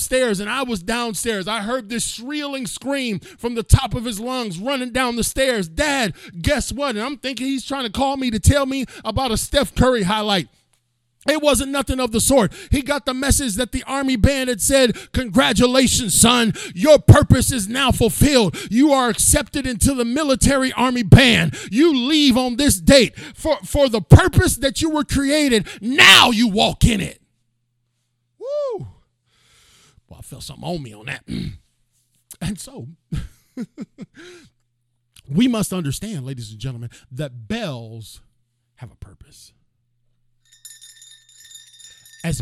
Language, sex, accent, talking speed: English, male, American, 155 wpm